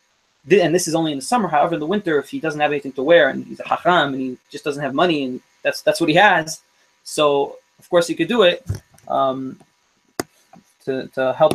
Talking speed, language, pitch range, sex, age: 235 wpm, English, 145-200 Hz, male, 20-39